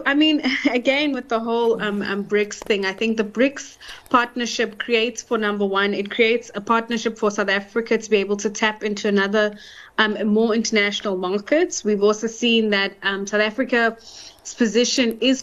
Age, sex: 20-39, female